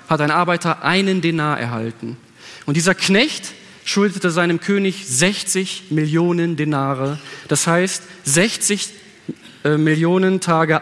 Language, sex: German, male